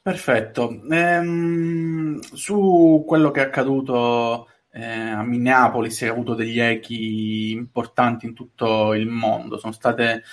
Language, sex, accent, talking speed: Italian, male, native, 120 wpm